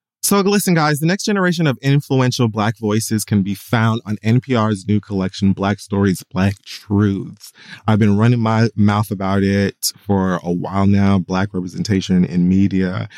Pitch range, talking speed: 95-125 Hz, 165 wpm